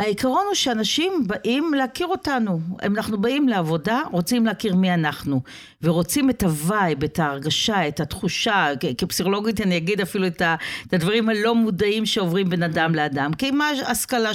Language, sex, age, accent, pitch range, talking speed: Hebrew, female, 50-69, native, 165-220 Hz, 150 wpm